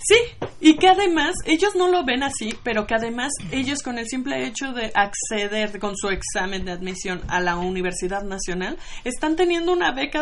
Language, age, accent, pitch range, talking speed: Spanish, 20-39, Mexican, 195-250 Hz, 190 wpm